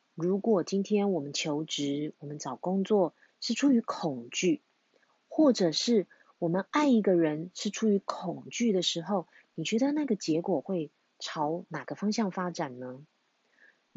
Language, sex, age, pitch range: Chinese, female, 30-49, 160-220 Hz